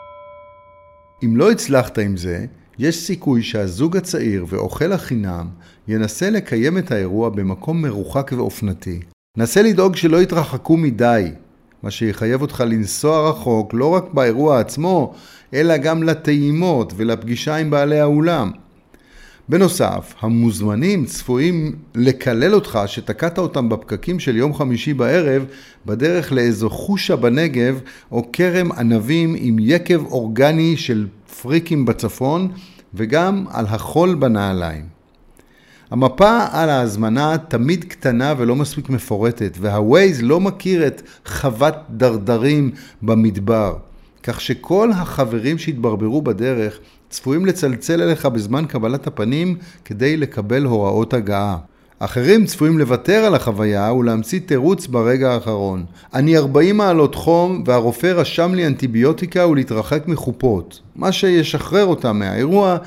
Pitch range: 110-160 Hz